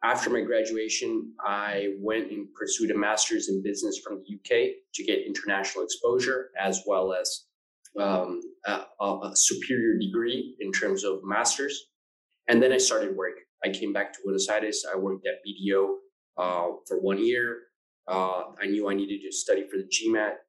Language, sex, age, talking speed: English, male, 20-39, 175 wpm